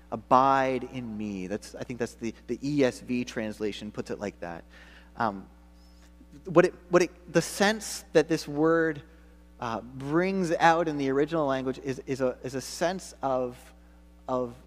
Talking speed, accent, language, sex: 165 wpm, American, English, male